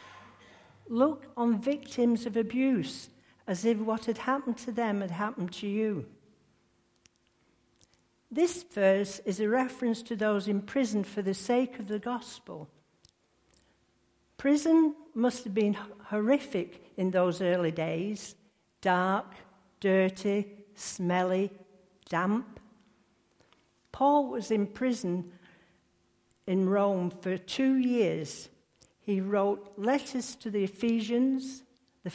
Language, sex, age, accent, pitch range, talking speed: English, female, 60-79, British, 185-240 Hz, 110 wpm